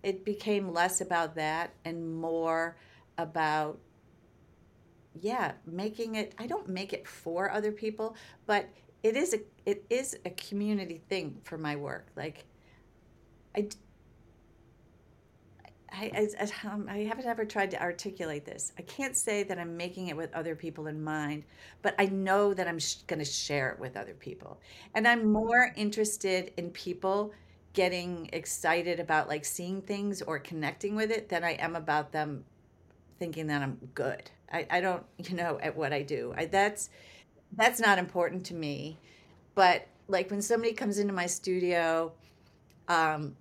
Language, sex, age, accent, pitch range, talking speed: English, female, 50-69, American, 155-200 Hz, 150 wpm